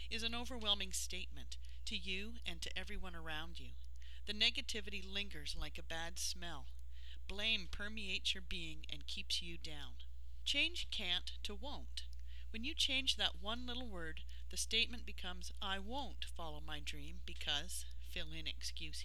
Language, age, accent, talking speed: English, 40-59, American, 155 wpm